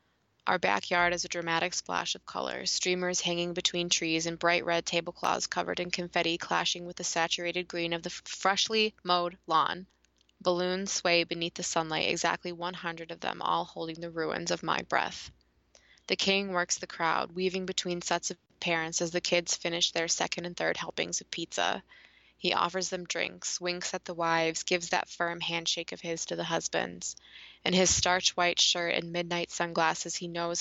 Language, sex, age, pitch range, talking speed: English, female, 20-39, 165-180 Hz, 180 wpm